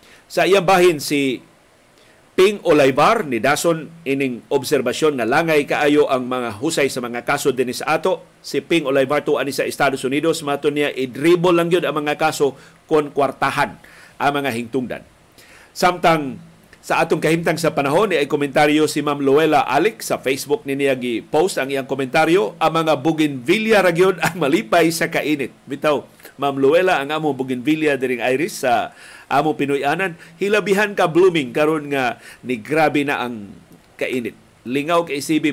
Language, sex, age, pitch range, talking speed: Filipino, male, 50-69, 135-160 Hz, 160 wpm